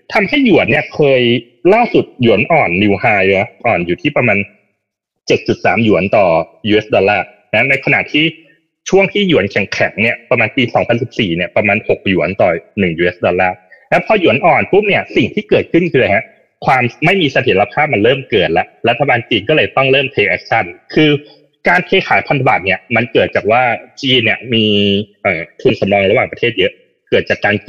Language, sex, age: Thai, male, 30-49